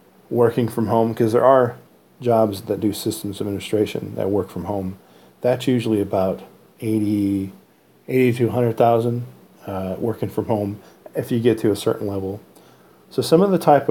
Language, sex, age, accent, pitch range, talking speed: English, male, 40-59, American, 100-125 Hz, 155 wpm